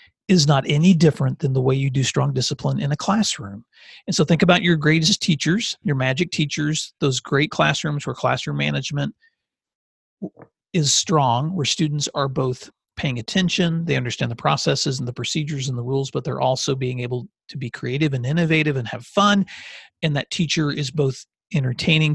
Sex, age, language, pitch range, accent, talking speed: male, 40-59, English, 135-170 Hz, American, 180 wpm